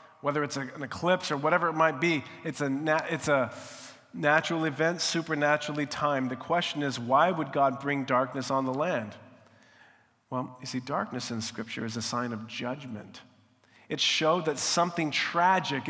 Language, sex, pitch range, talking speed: English, male, 120-155 Hz, 170 wpm